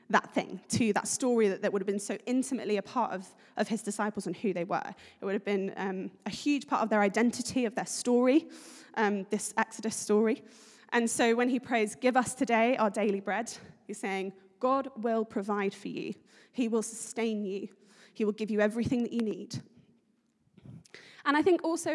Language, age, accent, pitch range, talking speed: English, 20-39, British, 205-245 Hz, 200 wpm